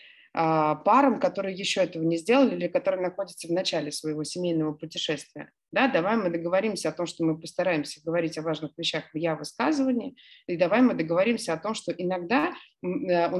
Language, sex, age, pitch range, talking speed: Russian, female, 30-49, 165-250 Hz, 170 wpm